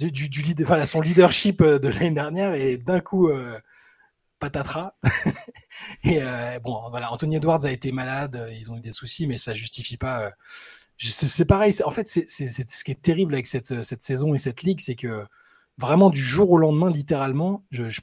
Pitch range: 125-170 Hz